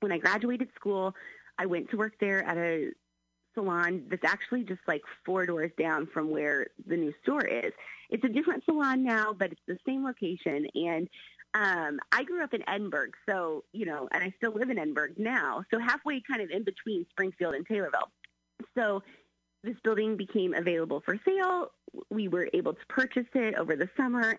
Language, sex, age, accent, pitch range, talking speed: English, female, 30-49, American, 180-270 Hz, 190 wpm